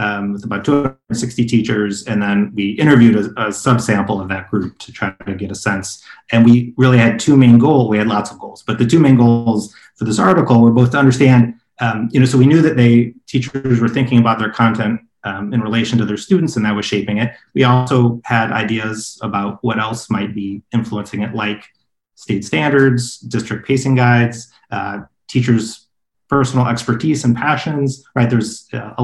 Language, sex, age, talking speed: English, male, 30-49, 200 wpm